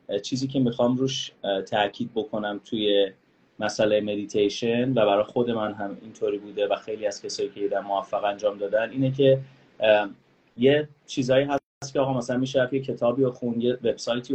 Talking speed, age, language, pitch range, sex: 175 wpm, 30-49, Persian, 105-135 Hz, male